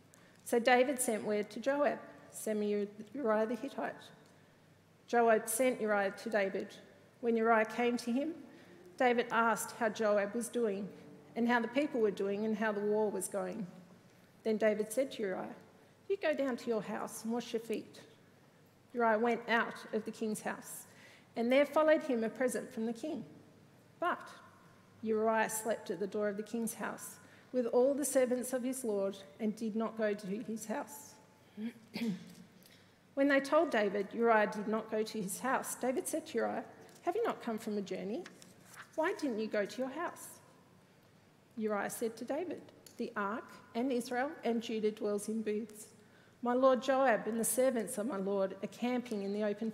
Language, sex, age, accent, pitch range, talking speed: English, female, 50-69, Australian, 210-250 Hz, 180 wpm